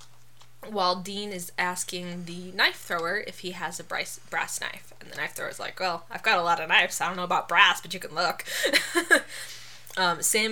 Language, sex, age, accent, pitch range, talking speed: English, female, 20-39, American, 155-195 Hz, 215 wpm